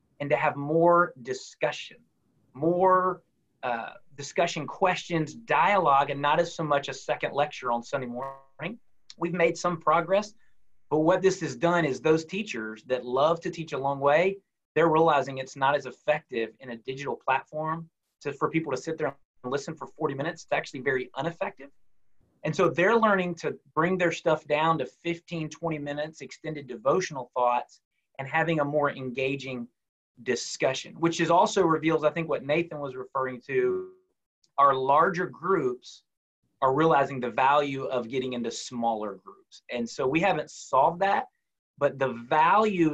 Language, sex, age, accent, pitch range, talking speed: English, male, 30-49, American, 135-170 Hz, 165 wpm